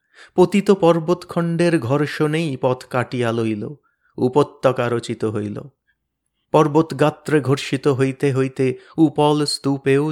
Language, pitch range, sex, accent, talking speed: Bengali, 120-145 Hz, male, native, 90 wpm